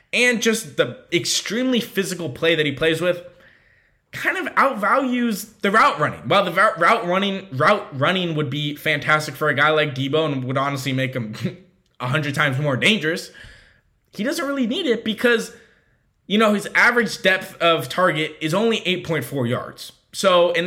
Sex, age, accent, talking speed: male, 20-39, American, 165 wpm